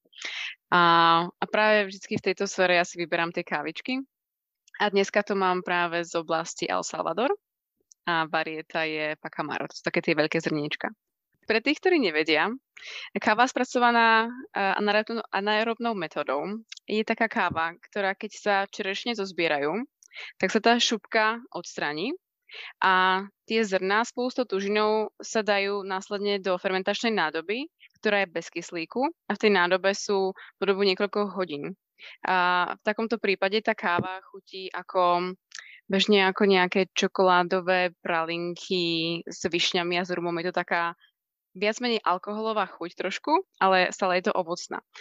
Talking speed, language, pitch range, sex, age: 140 wpm, Czech, 175-215 Hz, female, 20-39